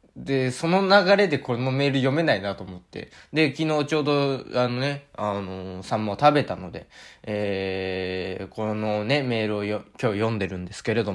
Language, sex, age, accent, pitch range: Japanese, male, 20-39, native, 115-165 Hz